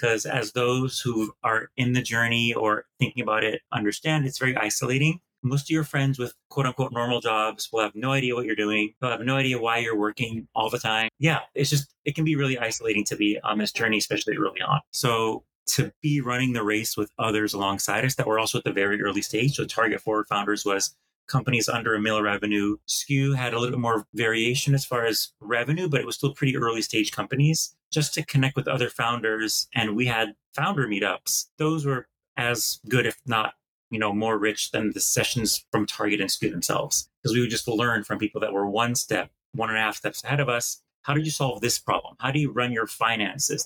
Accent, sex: American, male